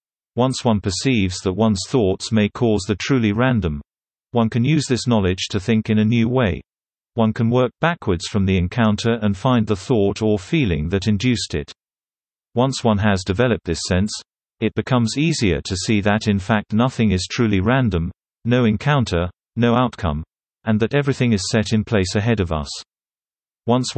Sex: male